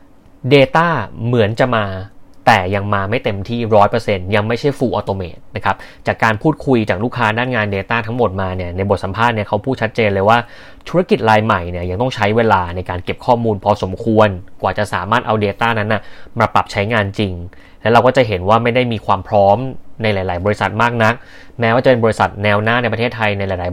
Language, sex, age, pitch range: Thai, male, 20-39, 100-120 Hz